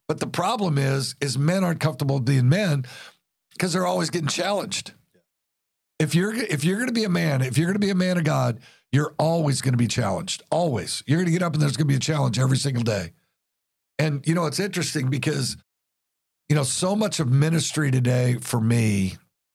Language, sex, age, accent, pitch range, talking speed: English, male, 60-79, American, 120-155 Hz, 215 wpm